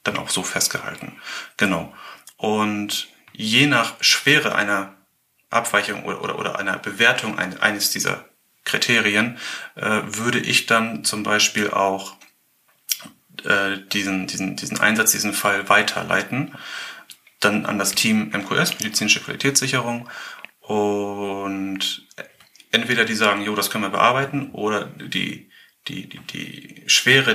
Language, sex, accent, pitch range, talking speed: German, male, German, 100-115 Hz, 125 wpm